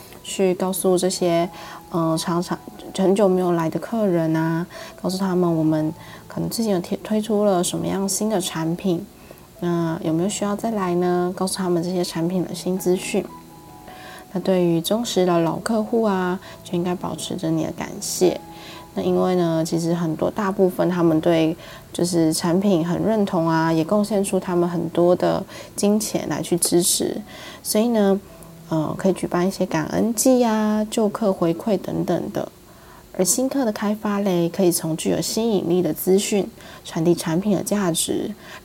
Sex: female